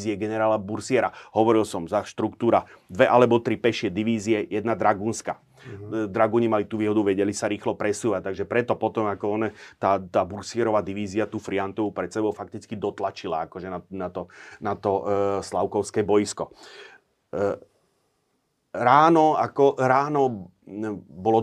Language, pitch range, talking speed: Slovak, 100-115 Hz, 145 wpm